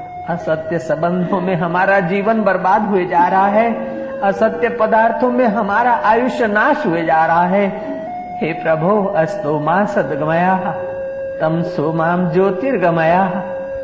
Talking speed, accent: 110 wpm, native